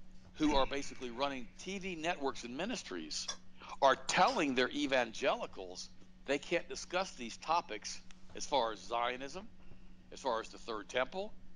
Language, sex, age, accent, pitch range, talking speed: English, male, 60-79, American, 100-150 Hz, 140 wpm